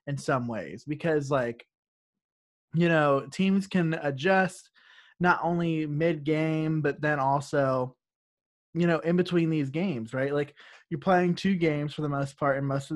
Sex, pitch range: male, 140-170 Hz